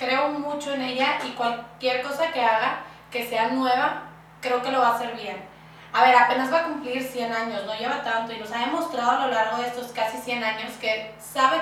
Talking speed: 225 wpm